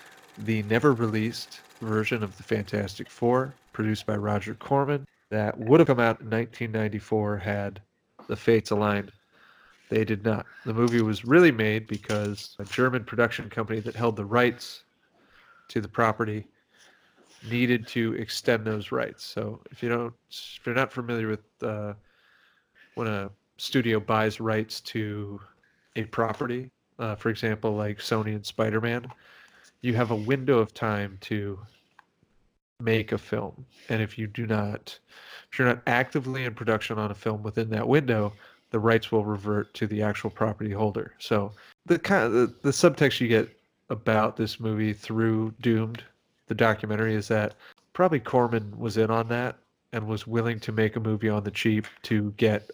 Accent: American